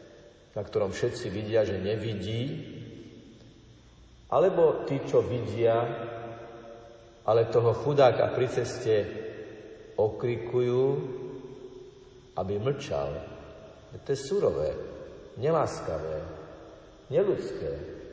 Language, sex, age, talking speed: Slovak, male, 50-69, 75 wpm